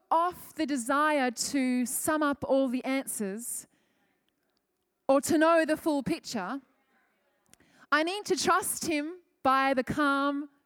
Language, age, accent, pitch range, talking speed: English, 20-39, Australian, 230-290 Hz, 130 wpm